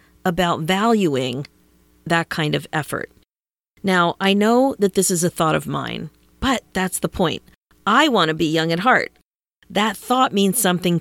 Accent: American